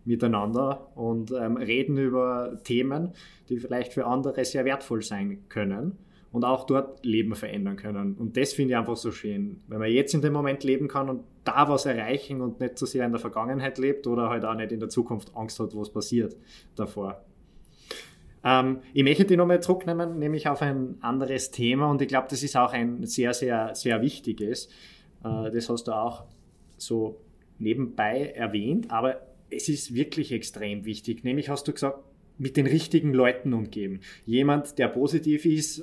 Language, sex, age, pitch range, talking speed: German, male, 20-39, 115-145 Hz, 185 wpm